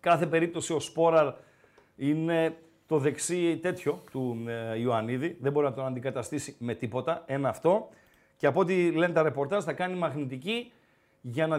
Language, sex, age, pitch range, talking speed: Greek, male, 40-59, 140-185 Hz, 155 wpm